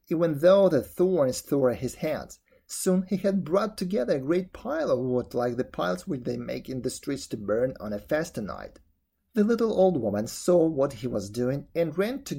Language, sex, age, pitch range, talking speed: English, male, 30-49, 145-195 Hz, 215 wpm